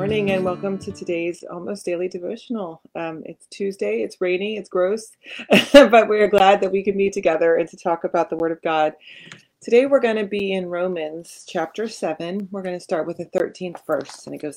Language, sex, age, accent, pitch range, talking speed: English, female, 30-49, American, 175-215 Hz, 215 wpm